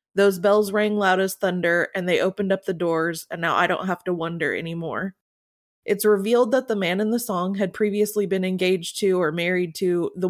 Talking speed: 215 wpm